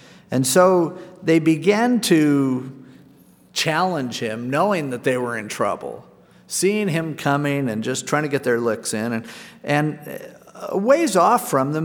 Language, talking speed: English, 155 wpm